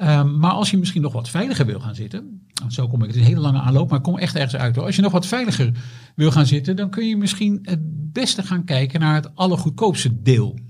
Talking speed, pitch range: 260 wpm, 125-170 Hz